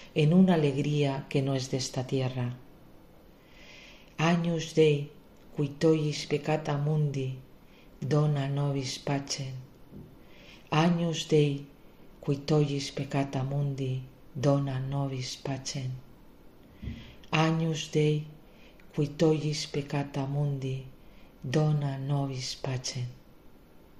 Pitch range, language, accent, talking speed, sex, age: 135-160 Hz, Spanish, Spanish, 85 wpm, female, 50-69